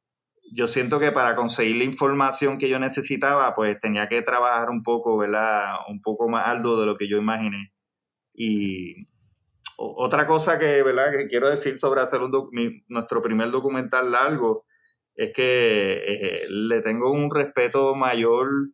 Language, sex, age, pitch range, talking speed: Spanish, male, 20-39, 110-140 Hz, 165 wpm